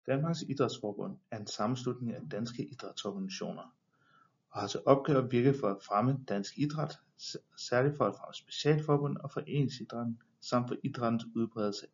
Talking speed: 150 wpm